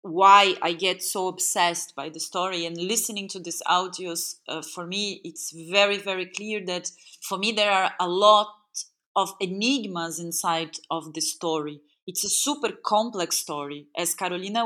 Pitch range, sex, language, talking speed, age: 180-230 Hz, female, French, 165 wpm, 30-49